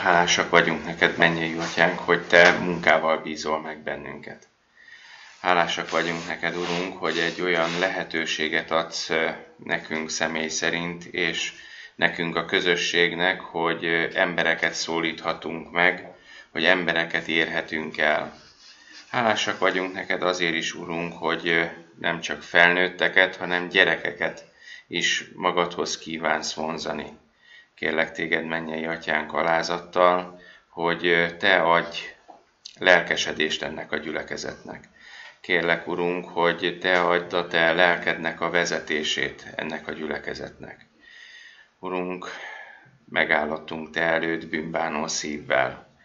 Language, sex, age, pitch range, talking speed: Hungarian, male, 30-49, 80-90 Hz, 105 wpm